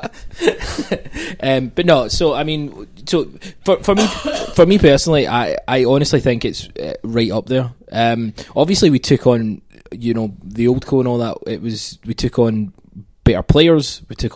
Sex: male